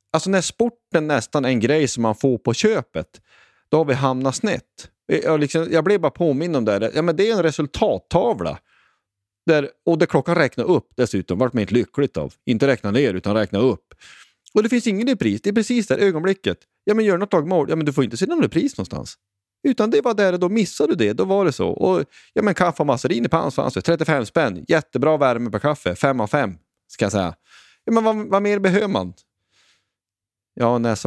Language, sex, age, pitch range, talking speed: Swedish, male, 30-49, 115-185 Hz, 230 wpm